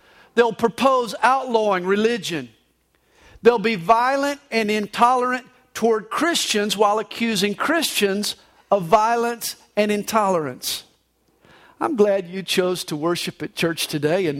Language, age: English, 50-69